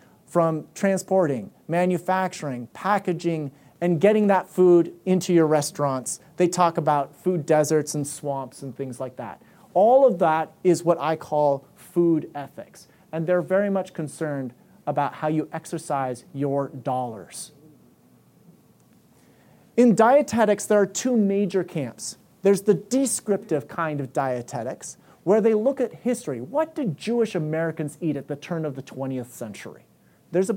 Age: 30-49